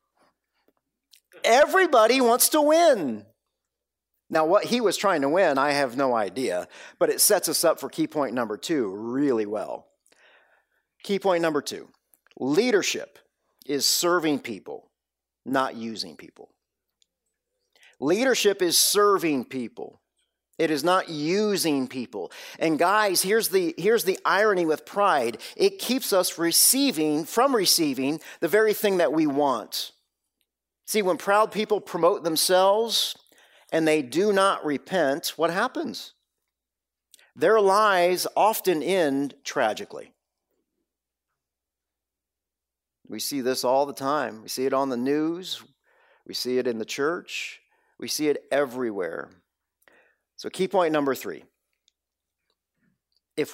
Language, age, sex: English, 40-59, male